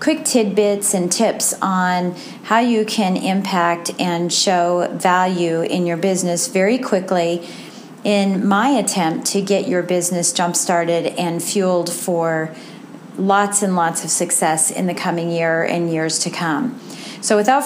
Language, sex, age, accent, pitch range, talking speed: English, female, 40-59, American, 170-210 Hz, 145 wpm